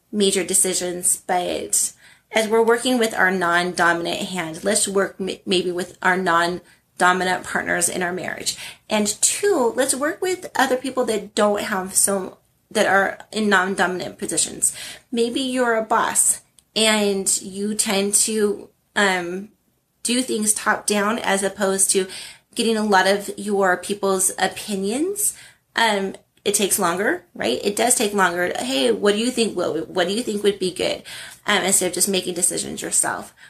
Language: English